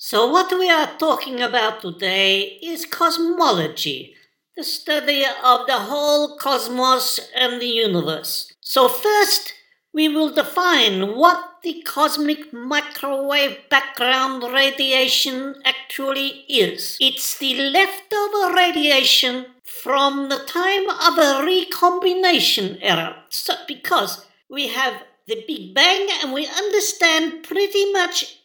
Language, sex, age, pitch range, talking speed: English, female, 50-69, 265-370 Hz, 115 wpm